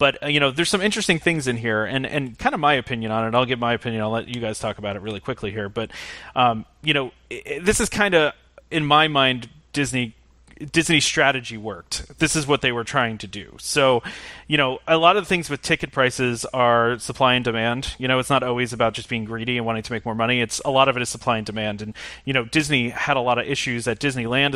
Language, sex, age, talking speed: English, male, 30-49, 250 wpm